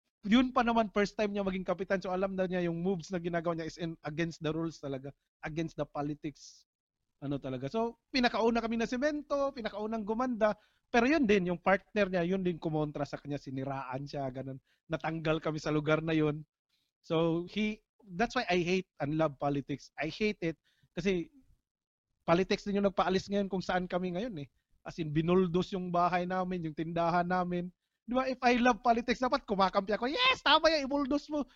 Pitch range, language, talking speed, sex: 155-220 Hz, English, 190 wpm, male